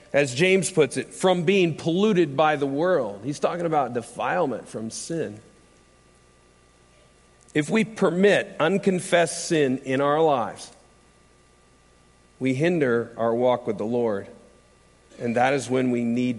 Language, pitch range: English, 115-160 Hz